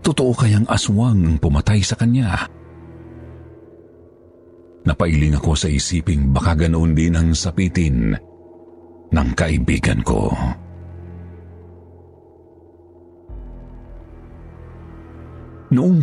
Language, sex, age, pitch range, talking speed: Filipino, male, 40-59, 80-95 Hz, 70 wpm